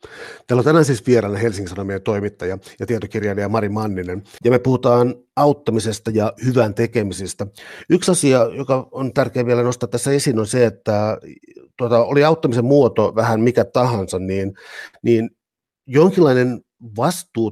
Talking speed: 140 wpm